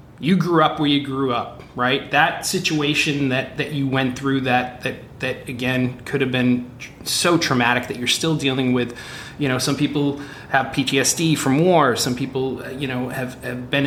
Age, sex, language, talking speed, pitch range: 30-49, male, English, 195 wpm, 130-155 Hz